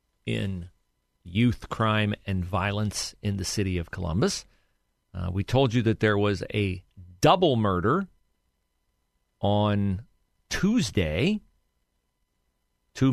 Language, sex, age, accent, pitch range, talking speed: English, male, 40-59, American, 90-130 Hz, 105 wpm